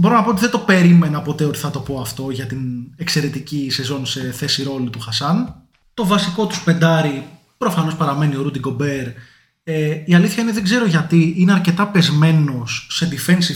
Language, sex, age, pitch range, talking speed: Greek, male, 20-39, 140-180 Hz, 190 wpm